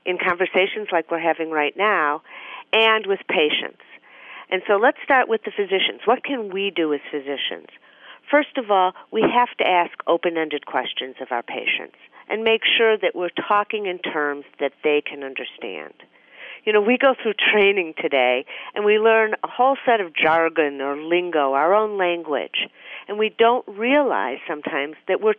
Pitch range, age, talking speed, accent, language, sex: 160-225 Hz, 50-69, 175 wpm, American, English, female